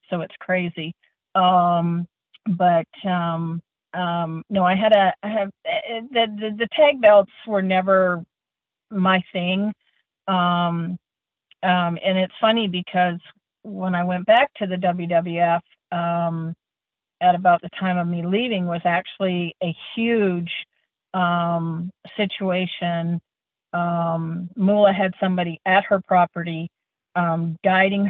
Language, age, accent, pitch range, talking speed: English, 50-69, American, 165-185 Hz, 120 wpm